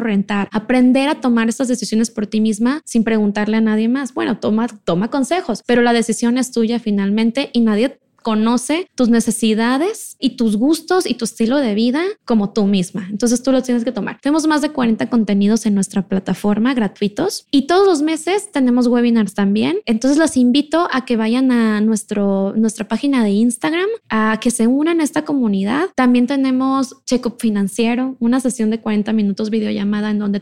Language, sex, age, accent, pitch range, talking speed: Spanish, female, 20-39, Mexican, 215-260 Hz, 185 wpm